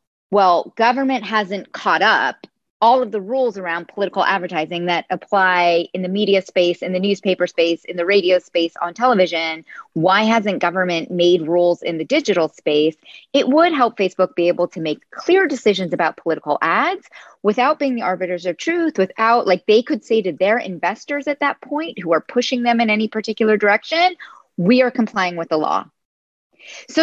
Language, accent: English, American